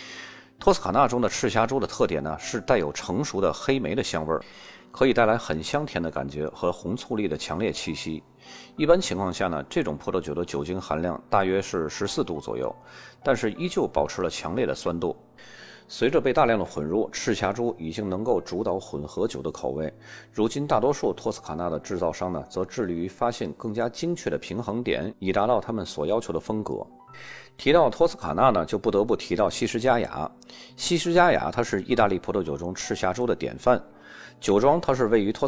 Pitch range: 85-125 Hz